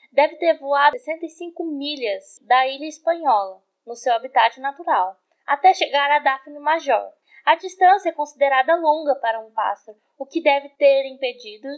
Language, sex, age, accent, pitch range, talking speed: Portuguese, female, 10-29, Brazilian, 245-330 Hz, 155 wpm